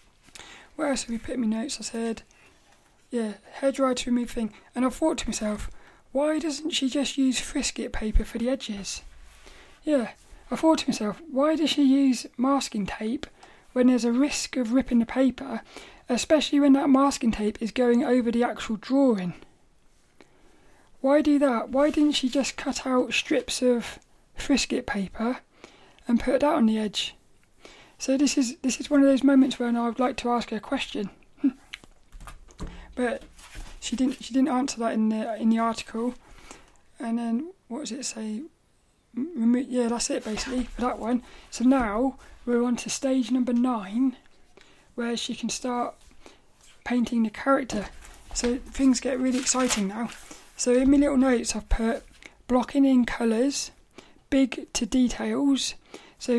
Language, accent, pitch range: English, British, 235-275 Hz